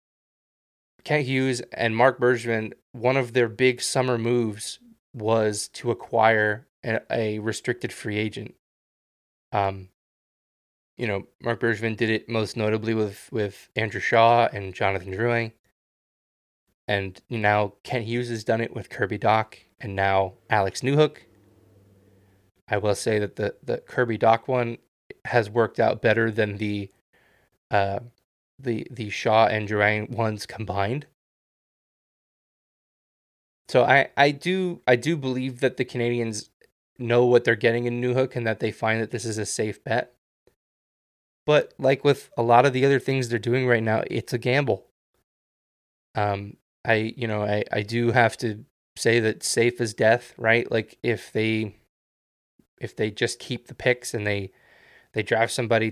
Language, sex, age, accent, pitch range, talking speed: English, male, 20-39, American, 105-120 Hz, 155 wpm